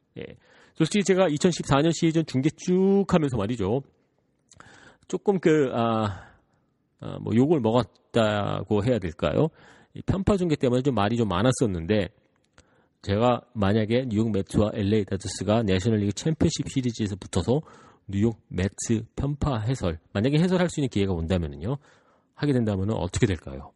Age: 40-59